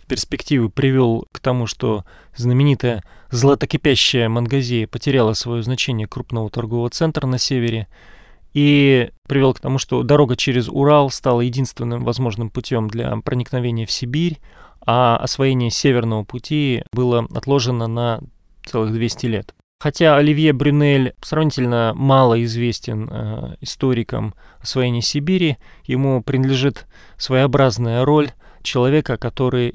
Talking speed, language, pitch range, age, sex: 115 wpm, Russian, 115-135 Hz, 20-39, male